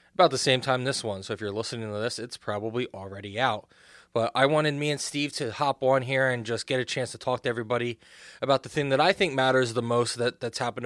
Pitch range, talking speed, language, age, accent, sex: 110-125 Hz, 255 wpm, English, 20-39, American, male